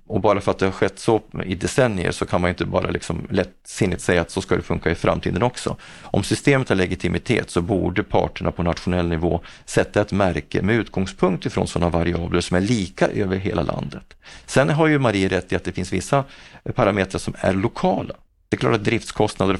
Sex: male